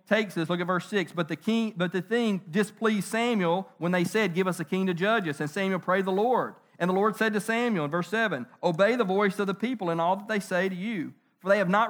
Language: English